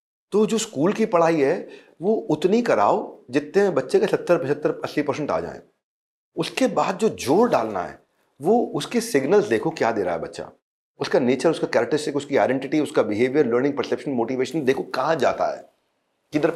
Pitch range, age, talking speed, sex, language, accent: 150-210 Hz, 40-59, 180 wpm, male, Hindi, native